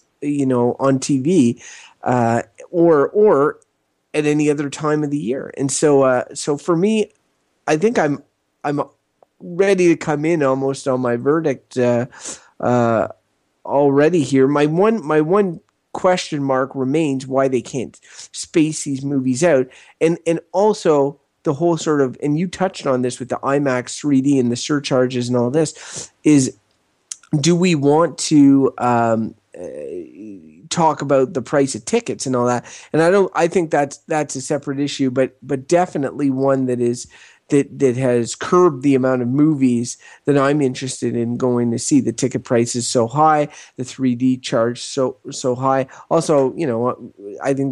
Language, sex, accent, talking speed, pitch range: English, male, American, 170 wpm, 125-150 Hz